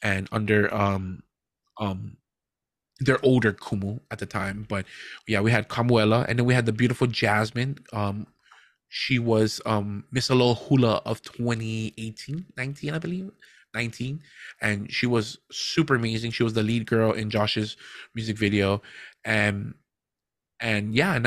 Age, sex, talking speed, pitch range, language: 20-39, male, 150 wpm, 110-125 Hz, English